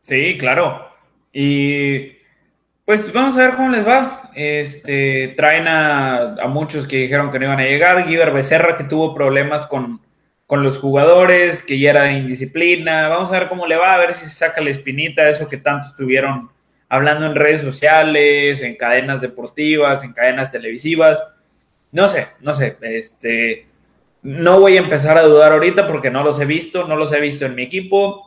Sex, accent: male, Mexican